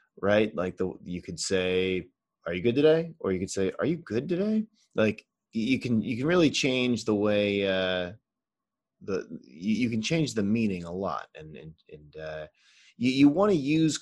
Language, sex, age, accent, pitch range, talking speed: English, male, 30-49, American, 95-135 Hz, 195 wpm